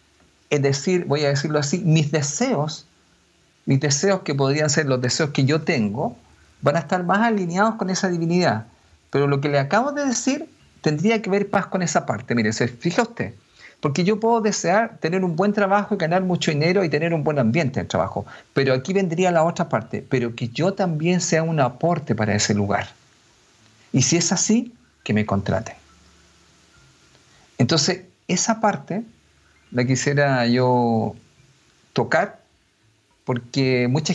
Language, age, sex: Spanish, 50-69, male